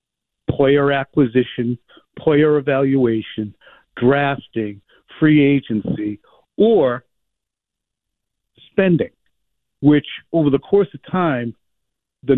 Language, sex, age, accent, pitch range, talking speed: English, male, 50-69, American, 115-140 Hz, 80 wpm